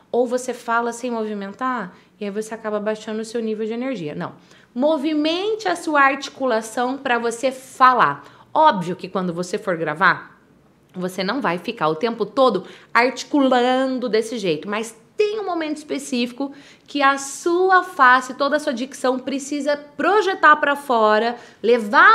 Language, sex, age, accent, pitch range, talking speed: Portuguese, female, 20-39, Brazilian, 225-300 Hz, 155 wpm